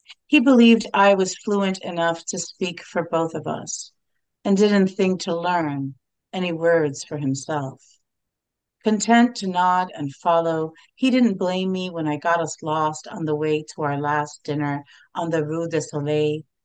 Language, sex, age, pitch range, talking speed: English, female, 50-69, 150-185 Hz, 170 wpm